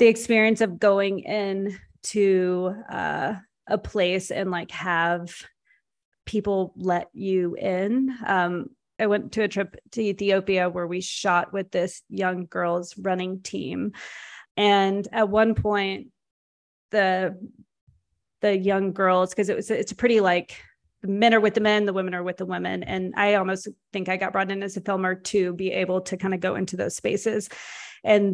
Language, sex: English, female